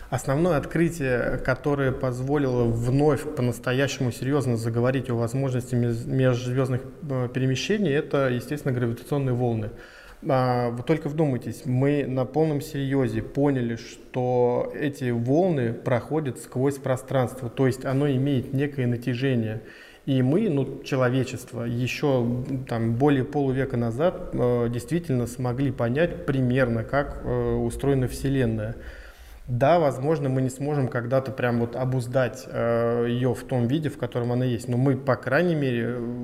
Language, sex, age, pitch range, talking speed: Russian, male, 20-39, 120-140 Hz, 125 wpm